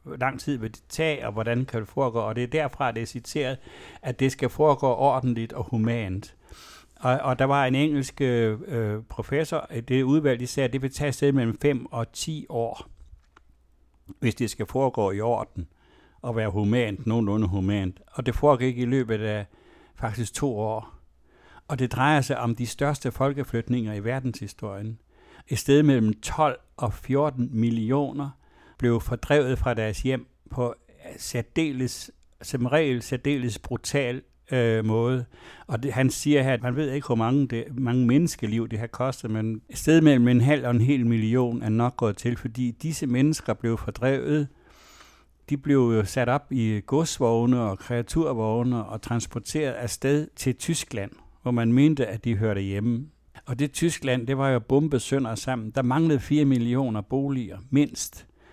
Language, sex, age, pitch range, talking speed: Danish, male, 60-79, 115-135 Hz, 170 wpm